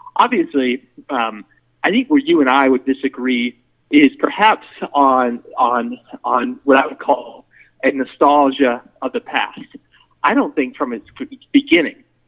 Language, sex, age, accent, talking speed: English, male, 30-49, American, 145 wpm